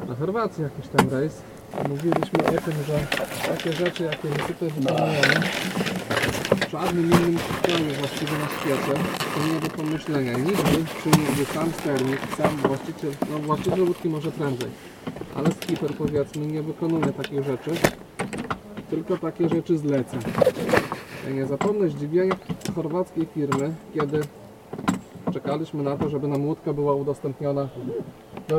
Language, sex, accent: Polish, male, native